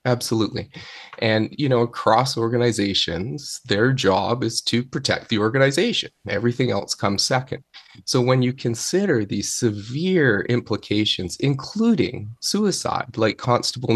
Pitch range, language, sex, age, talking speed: 110-150 Hz, English, male, 30-49, 120 wpm